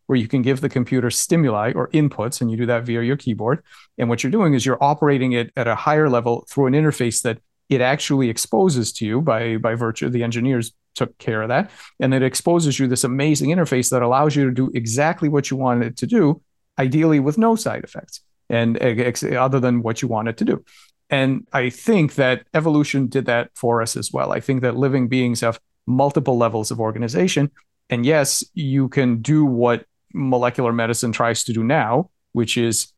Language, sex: English, male